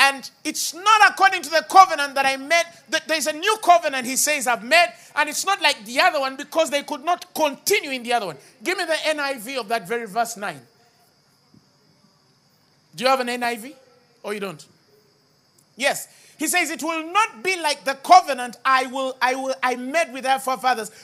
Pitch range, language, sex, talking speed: 260-355 Hz, English, male, 205 wpm